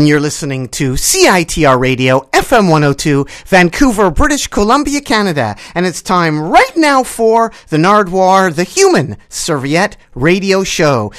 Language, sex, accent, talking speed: English, male, American, 135 wpm